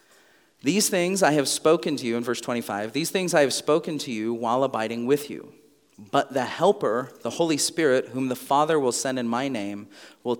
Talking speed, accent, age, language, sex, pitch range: 210 wpm, American, 40-59, English, male, 125-160 Hz